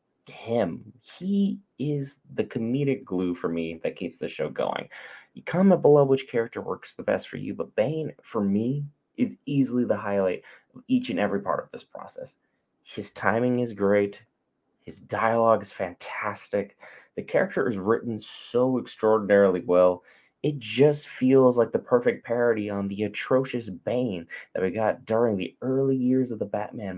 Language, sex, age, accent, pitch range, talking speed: English, male, 20-39, American, 100-140 Hz, 165 wpm